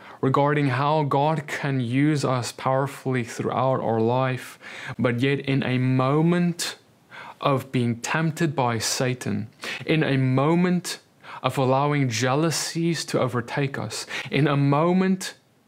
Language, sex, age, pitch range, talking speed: English, male, 20-39, 125-150 Hz, 125 wpm